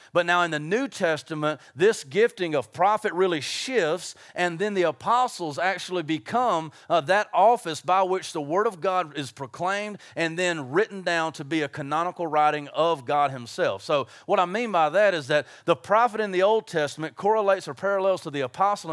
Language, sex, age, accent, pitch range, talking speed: English, male, 40-59, American, 155-195 Hz, 195 wpm